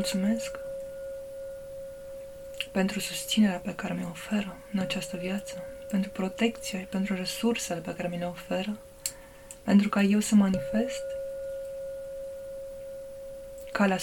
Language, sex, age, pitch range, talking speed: Romanian, female, 20-39, 185-275 Hz, 105 wpm